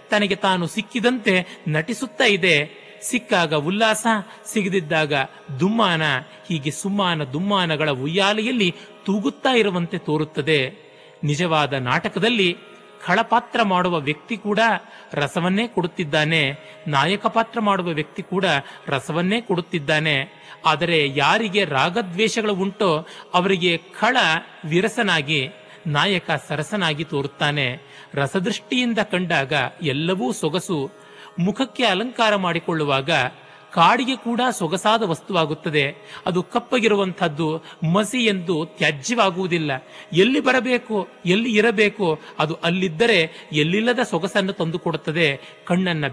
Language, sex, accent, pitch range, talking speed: Kannada, male, native, 155-210 Hz, 85 wpm